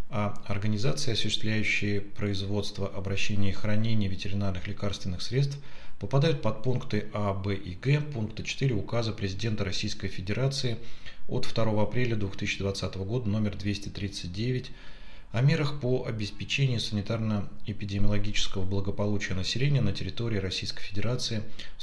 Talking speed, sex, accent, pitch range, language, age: 115 wpm, male, native, 100-120 Hz, Russian, 30-49